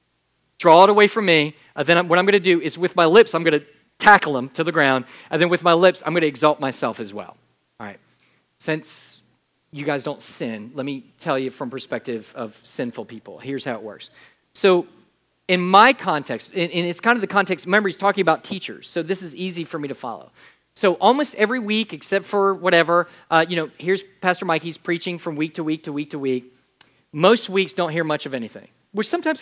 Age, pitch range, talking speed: 40-59, 135-185 Hz, 220 wpm